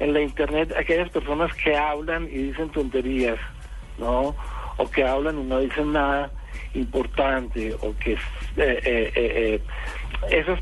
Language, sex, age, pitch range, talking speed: Spanish, male, 60-79, 125-160 Hz, 140 wpm